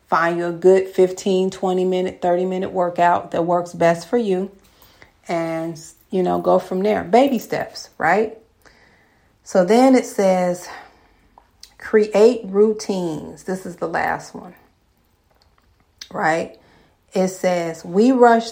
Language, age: English, 40-59